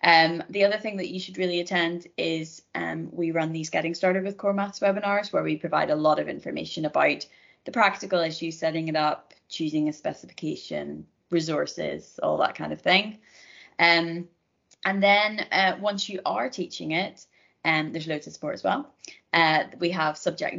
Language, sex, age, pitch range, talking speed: English, female, 20-39, 155-185 Hz, 185 wpm